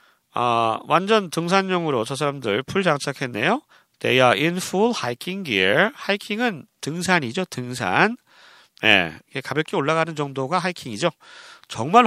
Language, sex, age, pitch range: Korean, male, 40-59, 130-195 Hz